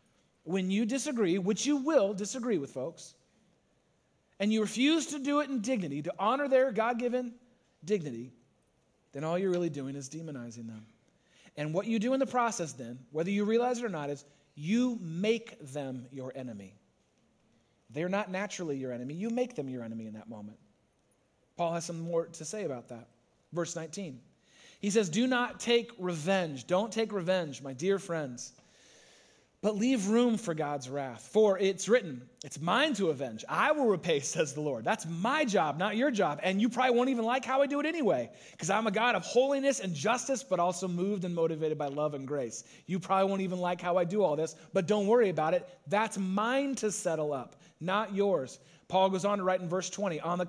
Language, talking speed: English, 200 wpm